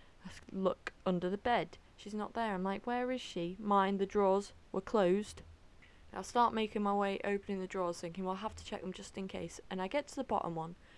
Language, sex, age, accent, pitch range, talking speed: English, female, 20-39, British, 170-225 Hz, 240 wpm